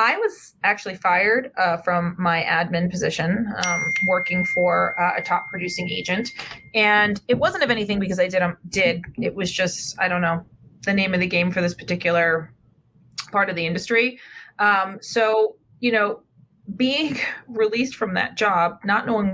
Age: 20-39